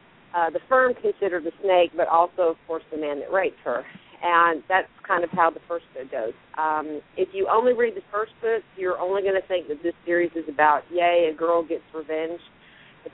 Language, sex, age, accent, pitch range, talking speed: English, female, 40-59, American, 155-190 Hz, 220 wpm